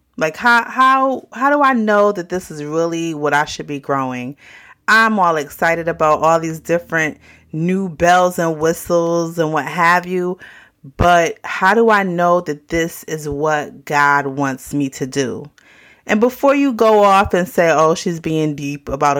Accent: American